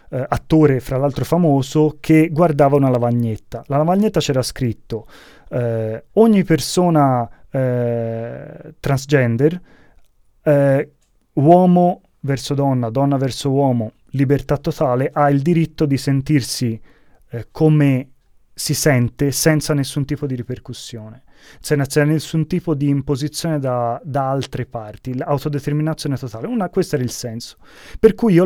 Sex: male